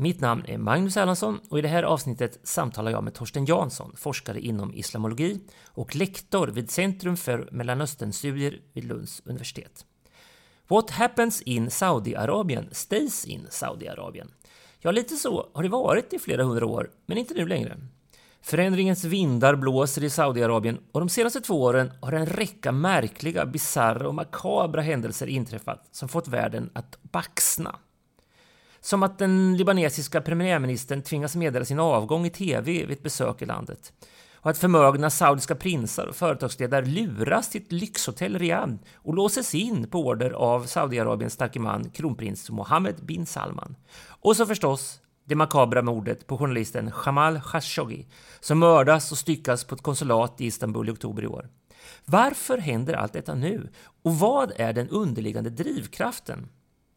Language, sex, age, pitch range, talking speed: English, male, 30-49, 125-175 Hz, 155 wpm